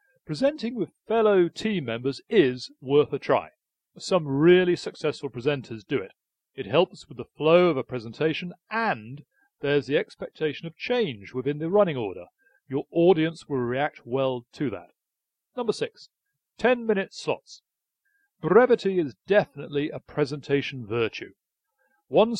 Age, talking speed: 40-59, 135 wpm